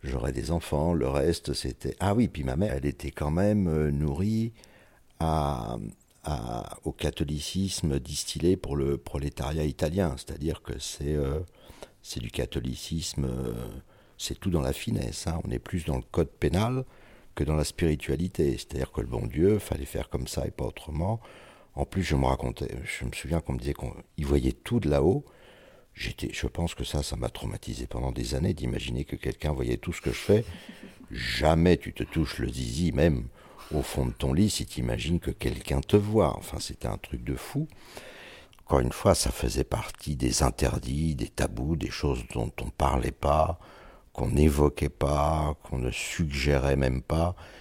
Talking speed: 185 wpm